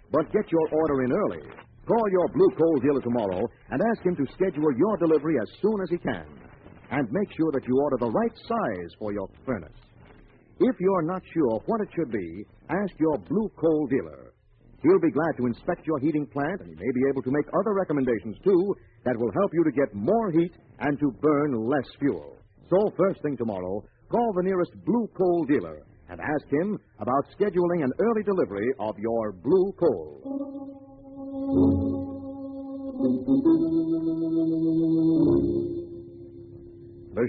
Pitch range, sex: 120-195 Hz, male